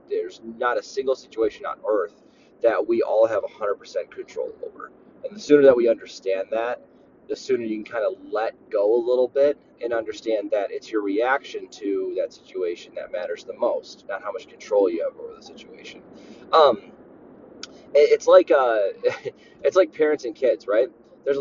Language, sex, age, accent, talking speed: English, male, 20-39, American, 175 wpm